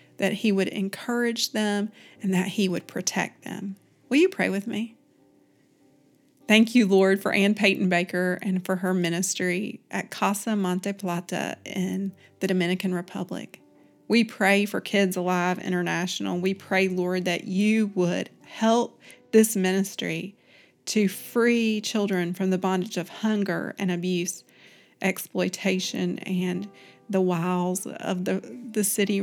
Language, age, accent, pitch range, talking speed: English, 40-59, American, 185-220 Hz, 140 wpm